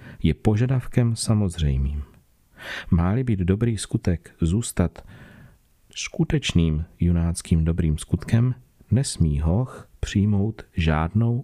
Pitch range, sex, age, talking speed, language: 85-110 Hz, male, 40-59, 85 wpm, Czech